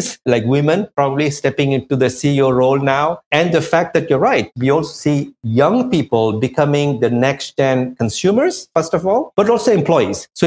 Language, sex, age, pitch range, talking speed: English, male, 50-69, 140-195 Hz, 180 wpm